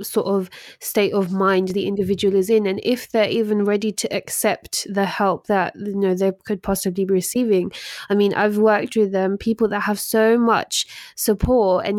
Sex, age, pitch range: female, 20-39, 195-215 Hz